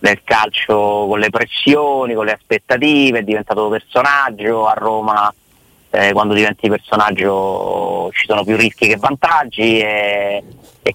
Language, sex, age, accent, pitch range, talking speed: Italian, male, 30-49, native, 100-115 Hz, 135 wpm